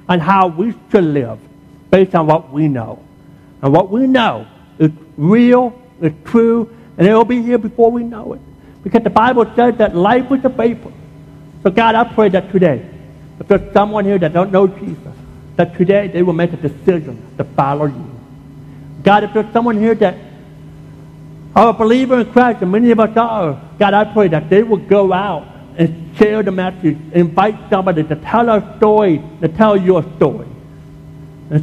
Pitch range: 150-215 Hz